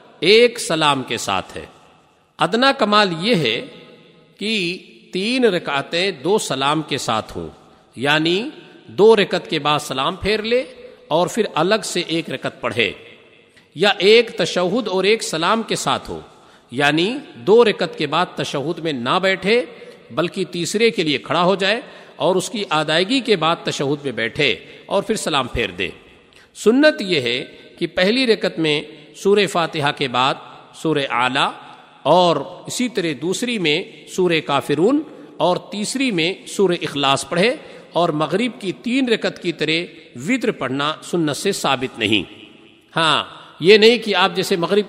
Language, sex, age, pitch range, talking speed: Urdu, male, 50-69, 155-205 Hz, 155 wpm